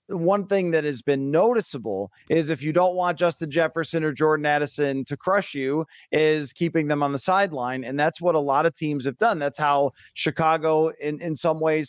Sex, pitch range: male, 145-175 Hz